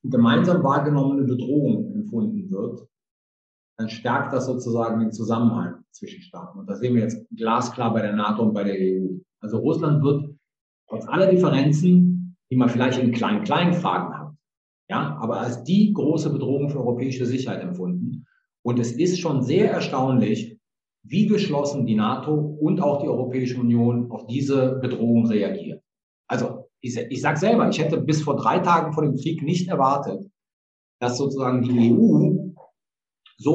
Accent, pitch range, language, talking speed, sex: German, 120-160 Hz, German, 160 wpm, male